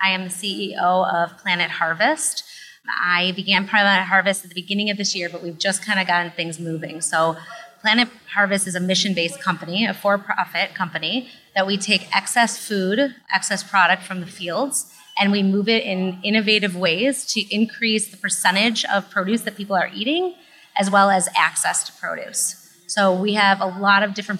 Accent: American